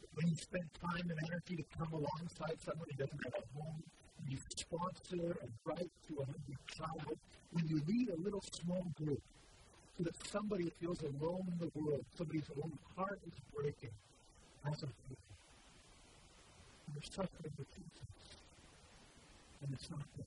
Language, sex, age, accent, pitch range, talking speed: English, male, 50-69, American, 115-165 Hz, 160 wpm